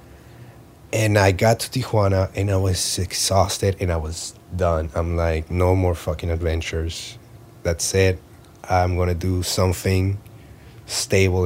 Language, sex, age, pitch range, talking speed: English, male, 30-49, 90-115 Hz, 135 wpm